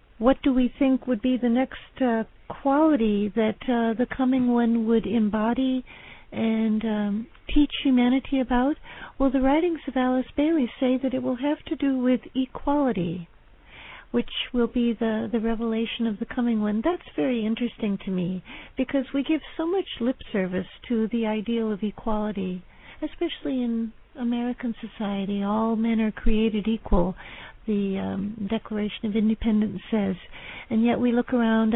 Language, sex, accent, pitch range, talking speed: English, female, American, 215-260 Hz, 160 wpm